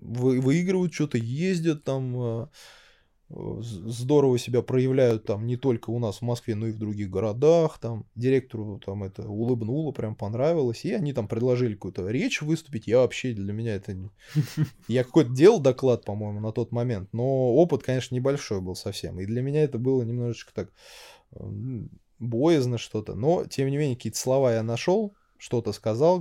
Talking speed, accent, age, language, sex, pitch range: 165 wpm, native, 20-39, Russian, male, 110-140 Hz